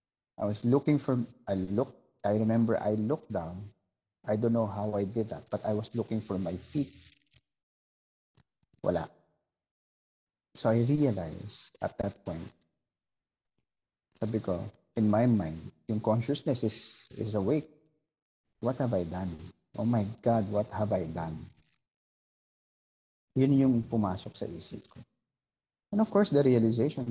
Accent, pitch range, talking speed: Filipino, 95-125 Hz, 140 wpm